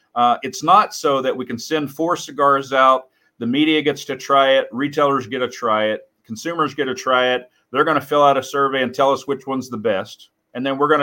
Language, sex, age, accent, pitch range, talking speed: English, male, 40-59, American, 130-155 Hz, 245 wpm